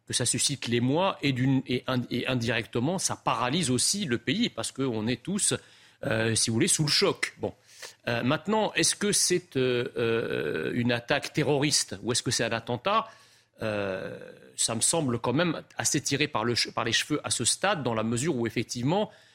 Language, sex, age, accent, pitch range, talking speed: French, male, 40-59, French, 120-165 Hz, 200 wpm